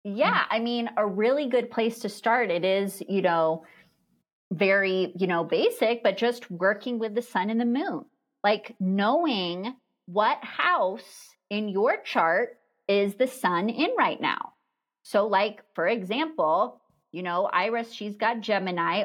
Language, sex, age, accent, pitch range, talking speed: English, female, 30-49, American, 195-255 Hz, 155 wpm